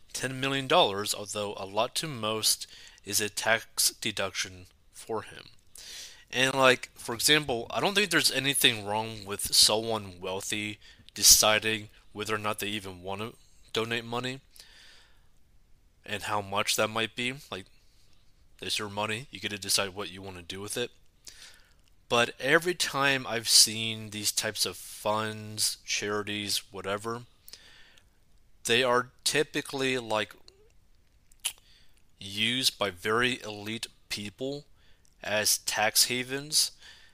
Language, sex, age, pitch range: English, male, 20-39, 100-120 Hz